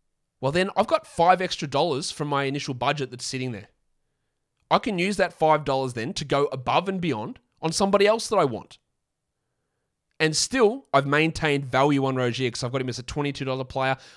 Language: English